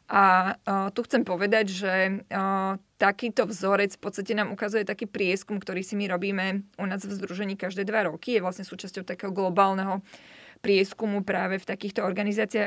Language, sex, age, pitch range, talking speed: Slovak, female, 20-39, 190-215 Hz, 170 wpm